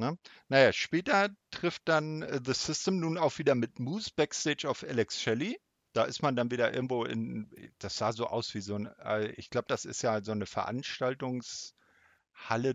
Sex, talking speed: male, 190 wpm